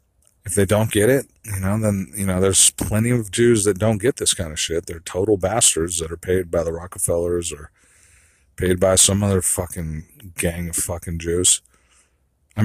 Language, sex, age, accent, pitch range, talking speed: English, male, 40-59, American, 85-105 Hz, 195 wpm